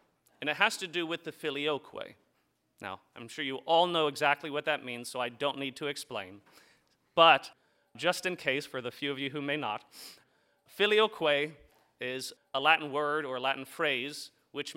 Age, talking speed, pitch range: 30-49, 185 wpm, 140-180 Hz